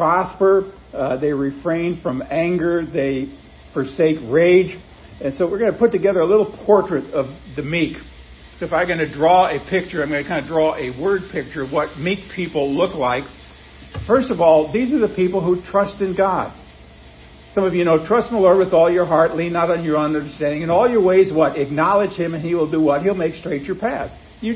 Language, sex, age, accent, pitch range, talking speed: English, male, 50-69, American, 150-195 Hz, 220 wpm